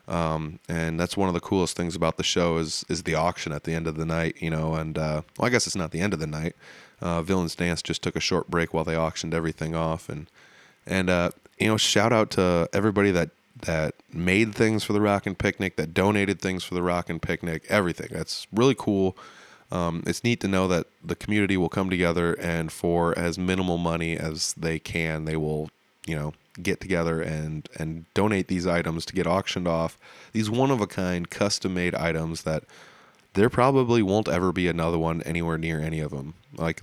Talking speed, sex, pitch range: 210 wpm, male, 80-95 Hz